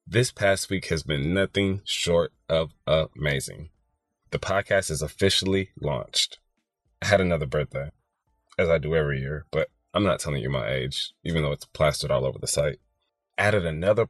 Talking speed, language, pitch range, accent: 170 wpm, English, 80-95 Hz, American